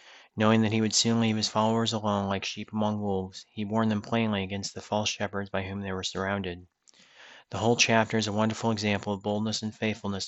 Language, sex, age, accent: English, male, 30-49, American